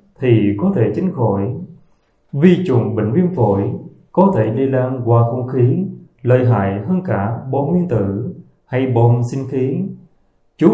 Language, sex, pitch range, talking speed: Vietnamese, male, 105-140 Hz, 160 wpm